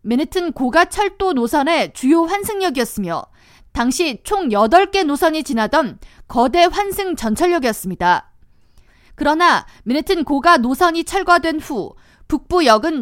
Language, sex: Korean, female